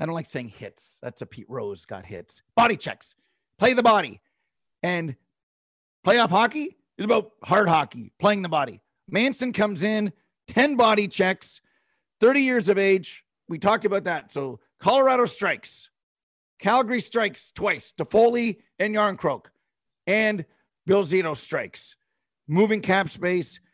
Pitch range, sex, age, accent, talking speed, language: 160-230 Hz, male, 40-59, American, 140 wpm, English